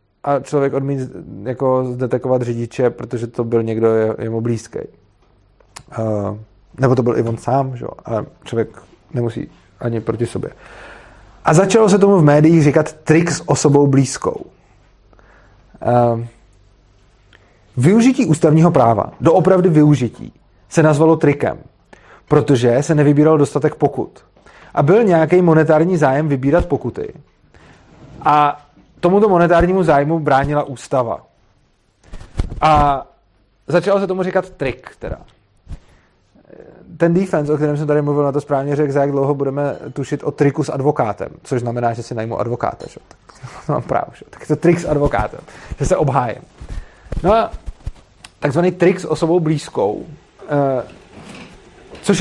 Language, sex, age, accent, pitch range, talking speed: Czech, male, 30-49, native, 120-165 Hz, 140 wpm